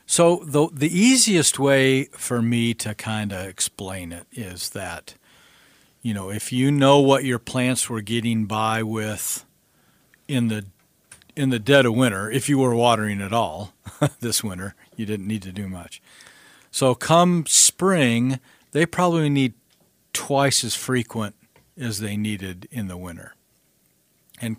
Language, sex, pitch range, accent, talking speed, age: English, male, 105-135 Hz, American, 155 wpm, 50-69